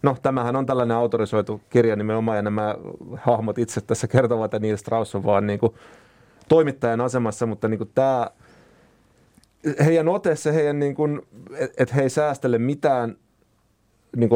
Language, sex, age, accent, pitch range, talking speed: Finnish, male, 30-49, native, 105-130 Hz, 140 wpm